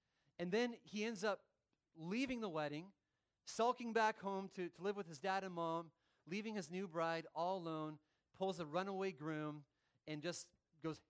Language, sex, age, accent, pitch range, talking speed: English, male, 30-49, American, 150-185 Hz, 175 wpm